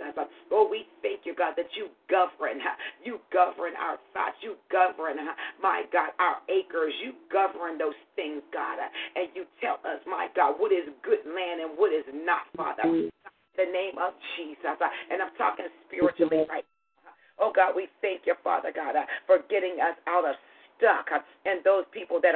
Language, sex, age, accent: English, female, 40-59, American